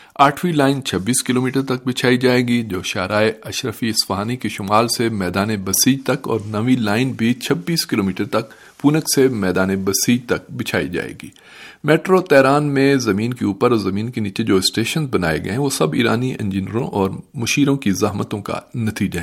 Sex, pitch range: male, 100-135 Hz